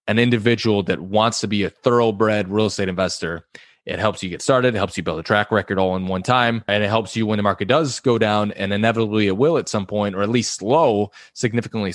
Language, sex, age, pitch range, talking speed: English, male, 20-39, 100-120 Hz, 245 wpm